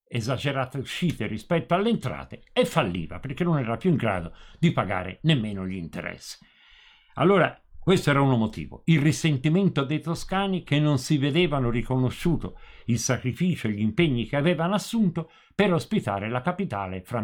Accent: native